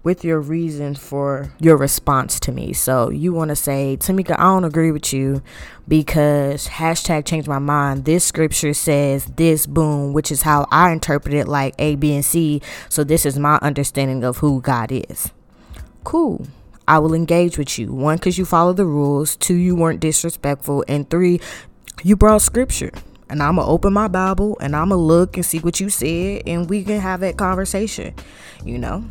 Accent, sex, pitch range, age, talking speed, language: American, female, 140-170 Hz, 20-39, 195 wpm, English